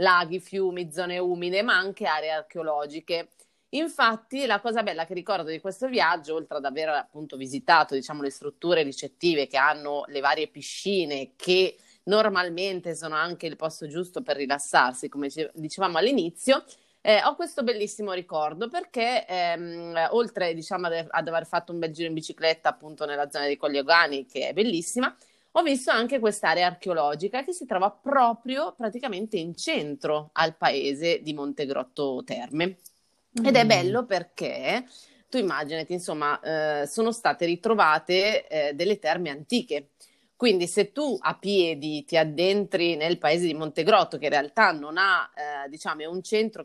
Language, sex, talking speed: Italian, female, 150 wpm